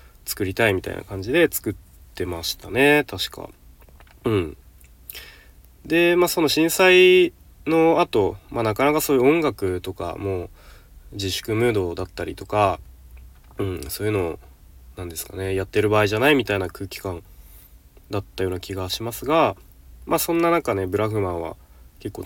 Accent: native